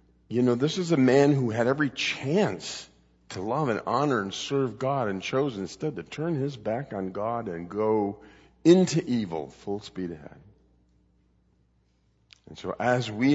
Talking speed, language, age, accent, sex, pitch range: 165 wpm, English, 50-69, American, male, 95-130 Hz